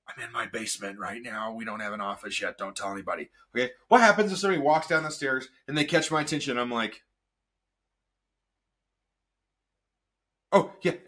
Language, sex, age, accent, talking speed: English, male, 30-49, American, 180 wpm